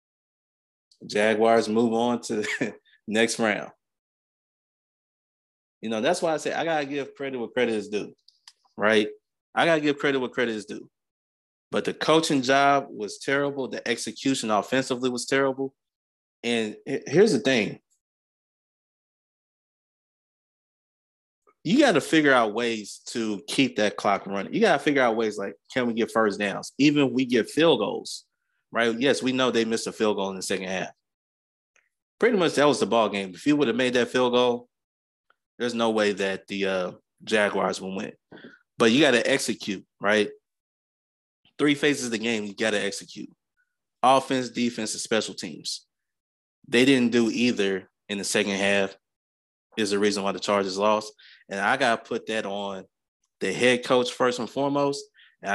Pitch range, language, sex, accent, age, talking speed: 100-130 Hz, English, male, American, 20-39, 175 wpm